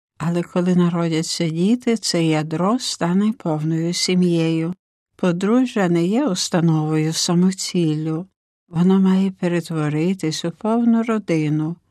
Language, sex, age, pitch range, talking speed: Ukrainian, female, 60-79, 165-205 Hz, 100 wpm